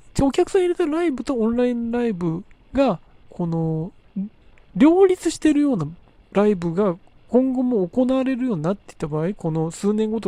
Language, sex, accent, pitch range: Japanese, male, native, 160-250 Hz